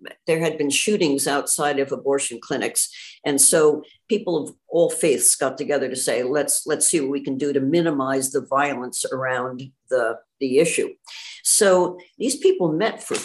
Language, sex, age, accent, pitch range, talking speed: English, female, 60-79, American, 150-230 Hz, 170 wpm